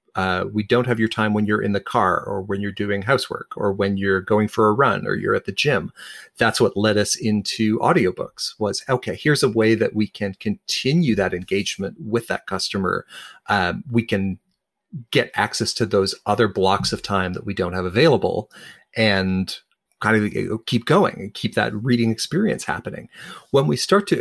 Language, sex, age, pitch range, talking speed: English, male, 40-59, 100-120 Hz, 195 wpm